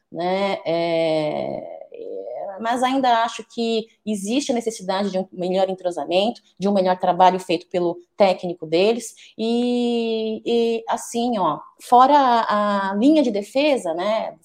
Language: Portuguese